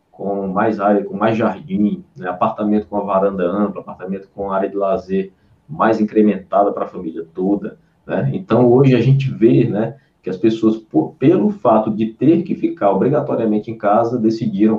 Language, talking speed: Portuguese, 180 wpm